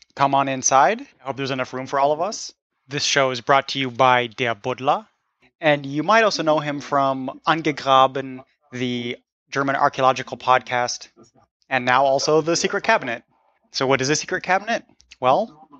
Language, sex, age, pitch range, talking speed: English, male, 20-39, 125-150 Hz, 175 wpm